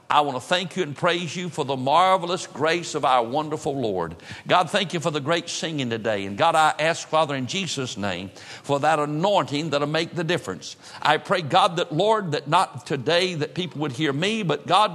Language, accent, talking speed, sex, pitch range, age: English, American, 215 wpm, male, 135-180 Hz, 50-69